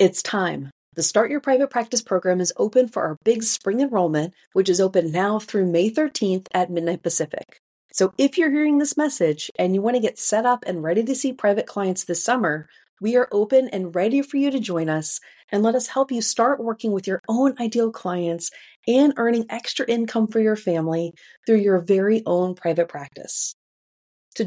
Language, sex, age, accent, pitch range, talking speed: English, female, 40-59, American, 180-235 Hz, 200 wpm